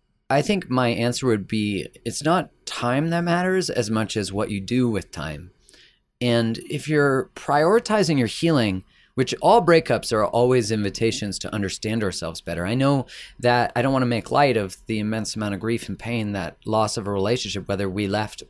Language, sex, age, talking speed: English, male, 30-49, 195 wpm